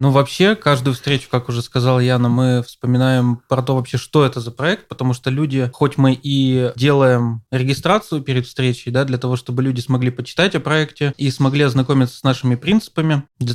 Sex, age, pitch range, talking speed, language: male, 20-39, 125-150 Hz, 190 wpm, Russian